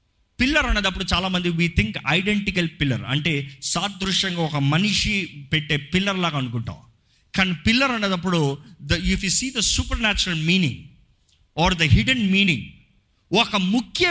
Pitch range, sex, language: 130-195 Hz, male, Telugu